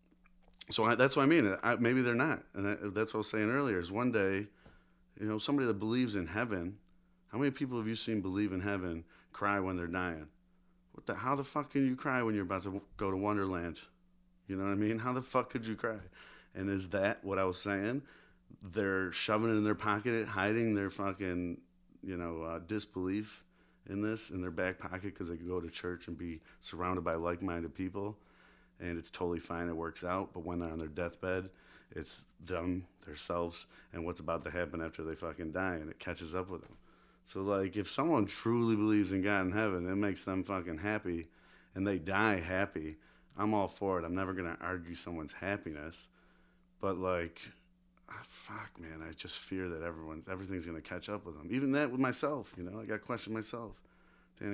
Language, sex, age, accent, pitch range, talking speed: English, male, 30-49, American, 85-105 Hz, 210 wpm